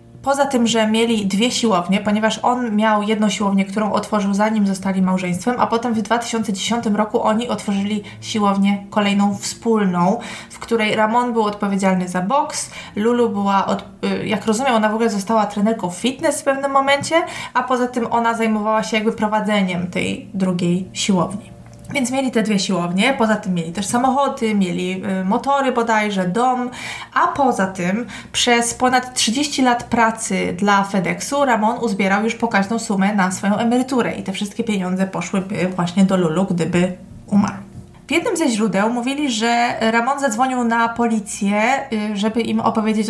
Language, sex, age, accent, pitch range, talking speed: Polish, female, 20-39, native, 200-240 Hz, 155 wpm